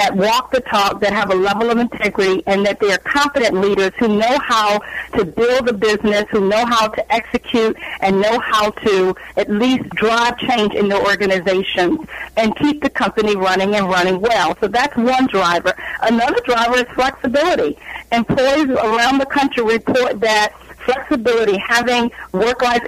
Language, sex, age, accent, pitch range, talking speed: English, female, 50-69, American, 200-235 Hz, 170 wpm